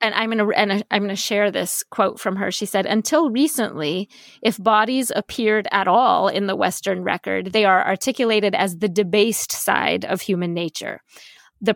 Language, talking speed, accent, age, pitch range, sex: English, 170 wpm, American, 20-39, 180-220 Hz, female